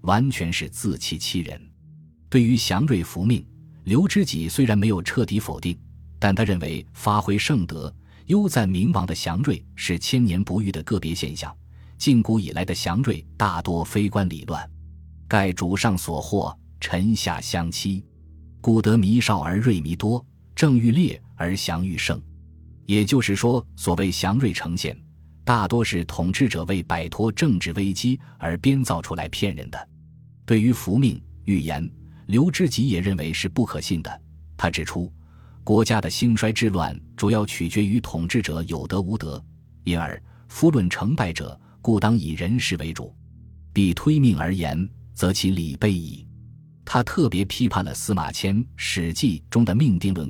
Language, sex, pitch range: Chinese, male, 85-115 Hz